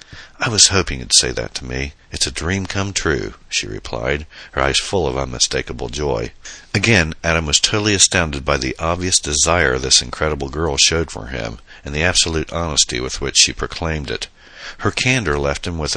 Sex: male